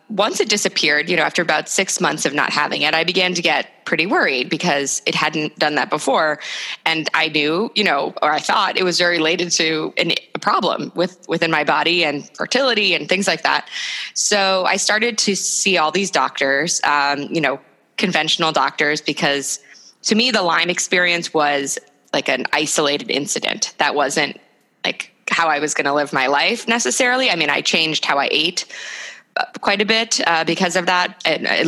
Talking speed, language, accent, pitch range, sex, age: 190 wpm, English, American, 155-190 Hz, female, 20-39